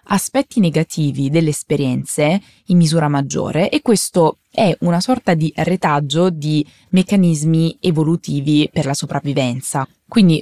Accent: native